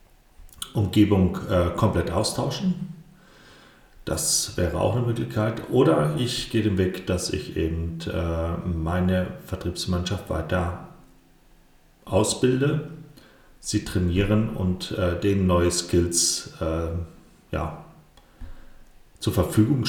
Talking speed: 100 wpm